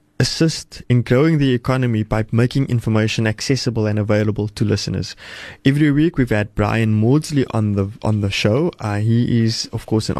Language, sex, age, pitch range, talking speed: English, male, 20-39, 110-135 Hz, 175 wpm